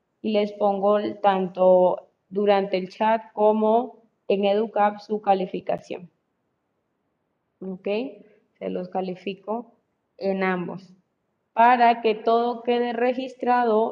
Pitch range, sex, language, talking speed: 190-235 Hz, female, Spanish, 100 wpm